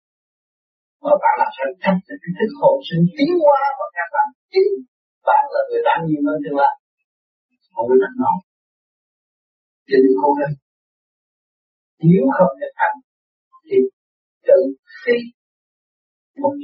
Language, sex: Vietnamese, male